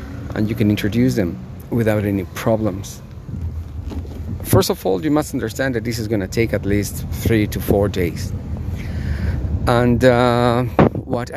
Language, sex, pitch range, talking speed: English, male, 95-115 Hz, 155 wpm